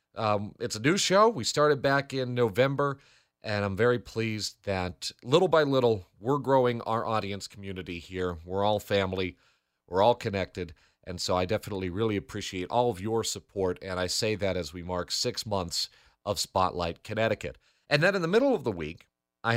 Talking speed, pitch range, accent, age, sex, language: 185 wpm, 100-135 Hz, American, 40-59, male, English